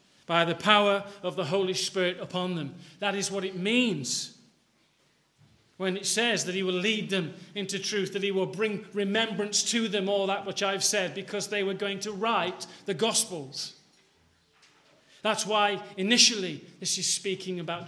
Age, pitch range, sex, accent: 40-59, 170-205 Hz, male, British